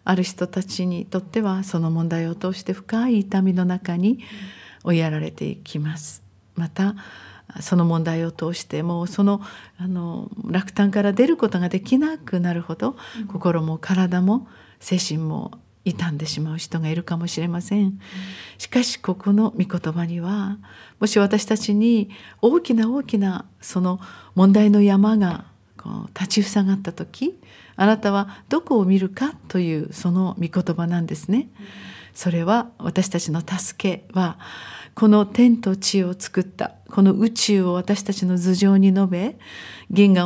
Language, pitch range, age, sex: Japanese, 175-210 Hz, 50-69, female